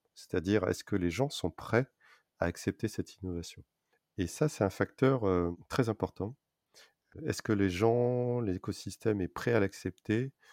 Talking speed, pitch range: 160 wpm, 90-110 Hz